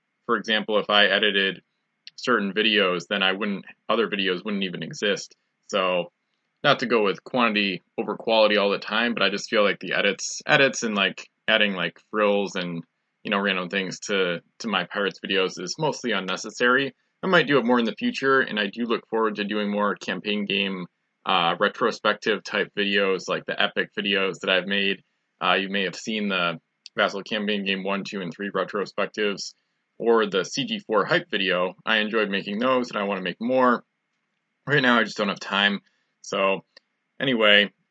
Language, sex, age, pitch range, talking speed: English, male, 20-39, 95-110 Hz, 190 wpm